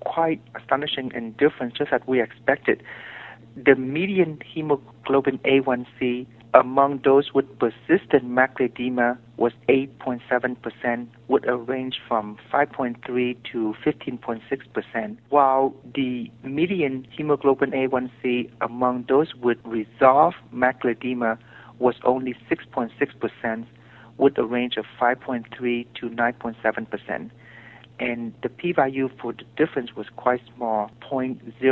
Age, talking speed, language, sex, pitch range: 50-69, 110 wpm, English, male, 120-135 Hz